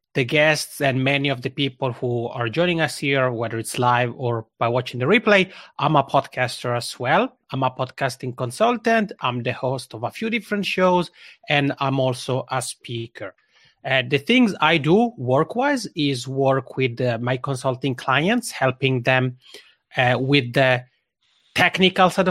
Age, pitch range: 30-49, 125-175 Hz